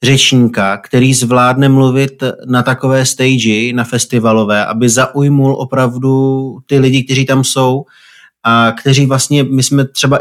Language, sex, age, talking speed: Slovak, male, 30-49, 135 wpm